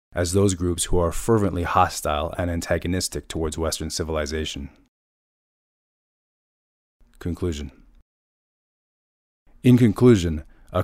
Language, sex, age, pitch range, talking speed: English, male, 30-49, 80-95 Hz, 90 wpm